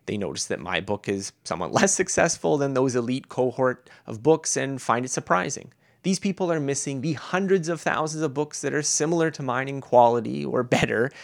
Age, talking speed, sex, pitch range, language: 30-49, 205 wpm, male, 115-160 Hz, English